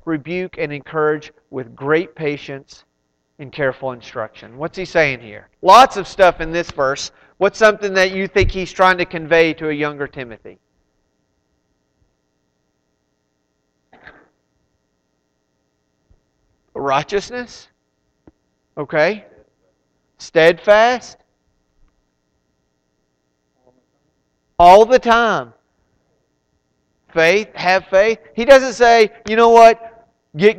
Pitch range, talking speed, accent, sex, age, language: 120-190 Hz, 95 wpm, American, male, 40-59, English